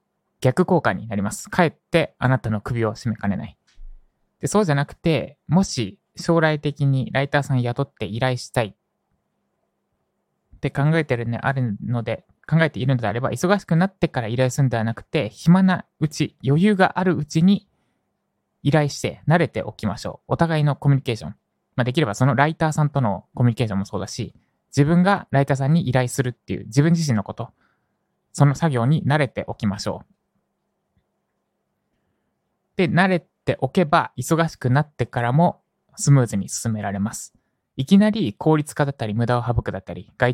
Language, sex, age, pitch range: Japanese, male, 20-39, 120-165 Hz